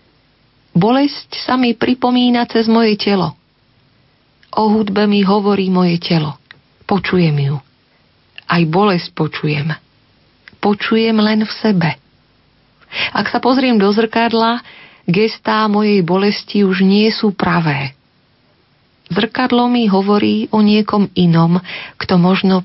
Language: Slovak